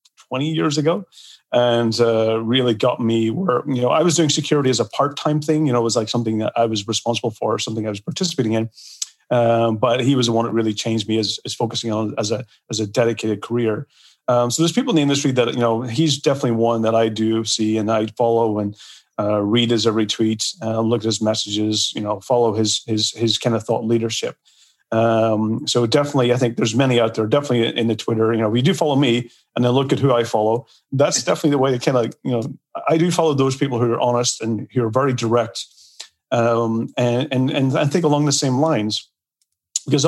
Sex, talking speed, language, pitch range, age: male, 230 wpm, English, 110-130 Hz, 30-49